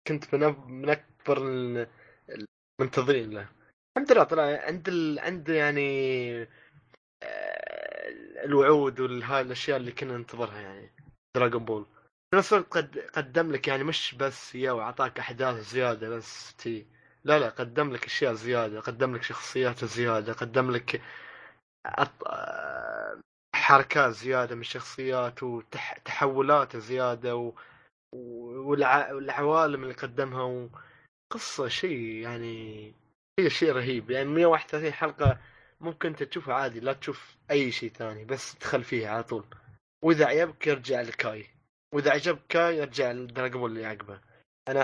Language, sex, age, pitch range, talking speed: Arabic, male, 20-39, 120-150 Hz, 125 wpm